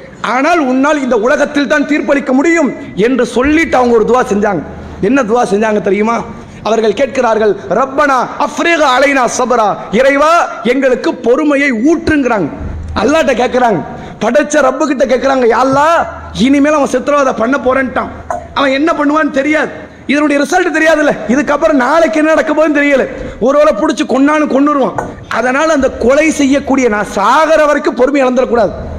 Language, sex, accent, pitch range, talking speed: English, male, Indian, 240-310 Hz, 80 wpm